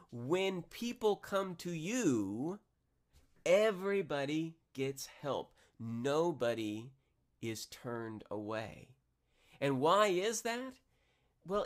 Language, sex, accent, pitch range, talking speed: English, male, American, 115-165 Hz, 85 wpm